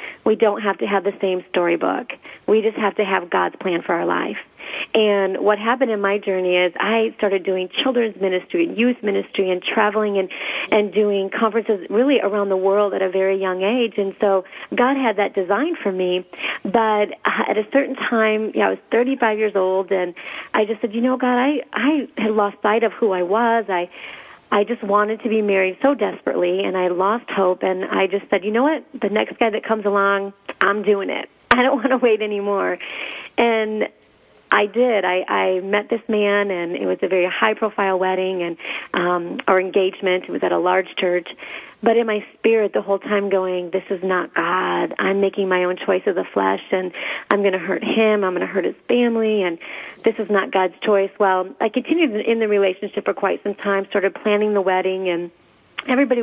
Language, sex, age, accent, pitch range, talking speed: English, female, 40-59, American, 185-220 Hz, 210 wpm